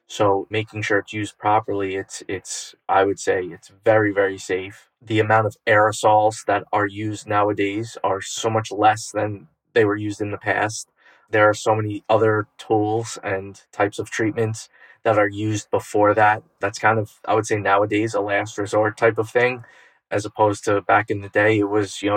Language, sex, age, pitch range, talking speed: English, male, 20-39, 105-115 Hz, 195 wpm